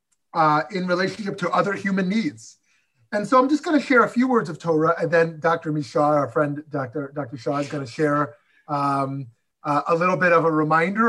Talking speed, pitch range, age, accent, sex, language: 215 wpm, 150-205 Hz, 30-49, American, male, English